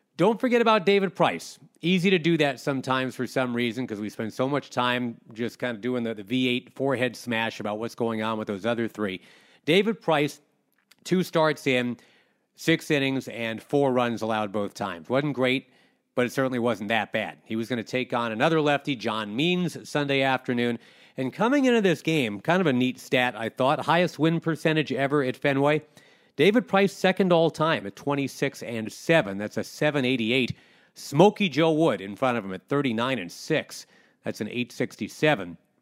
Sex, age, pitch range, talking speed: male, 40-59, 115-150 Hz, 190 wpm